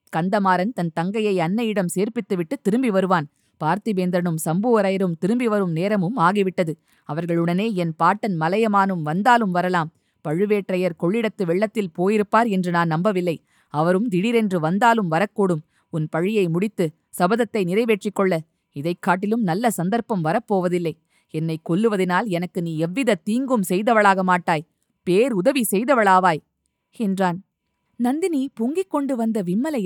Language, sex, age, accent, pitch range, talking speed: Tamil, female, 20-39, native, 185-275 Hz, 115 wpm